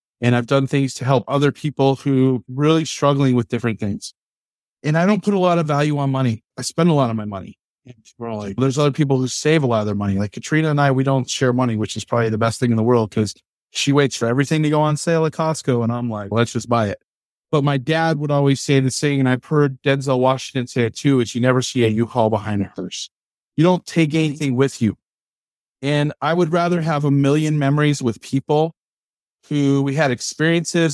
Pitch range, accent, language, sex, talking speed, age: 120-155 Hz, American, English, male, 240 wpm, 40-59